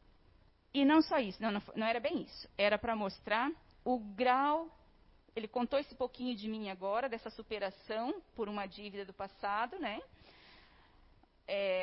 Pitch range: 210-295 Hz